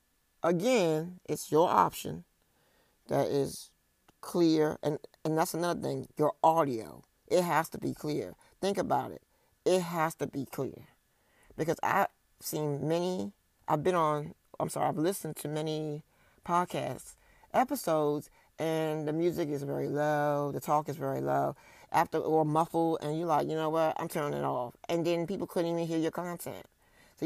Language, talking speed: English, 165 wpm